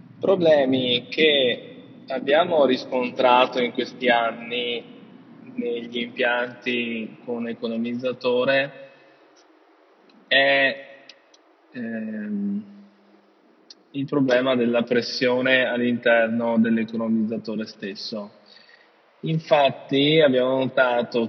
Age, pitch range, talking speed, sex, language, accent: 20-39, 120-145 Hz, 65 wpm, male, Italian, native